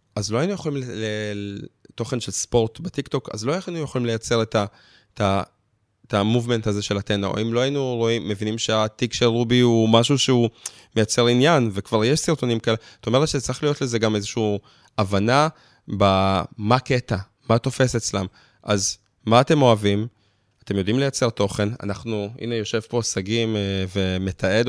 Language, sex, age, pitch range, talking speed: Hebrew, male, 20-39, 105-125 Hz, 155 wpm